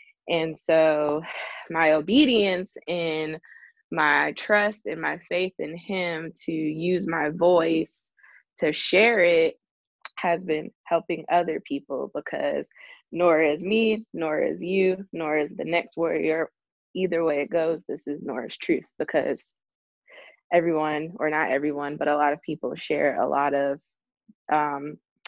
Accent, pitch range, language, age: American, 155-215 Hz, English, 20-39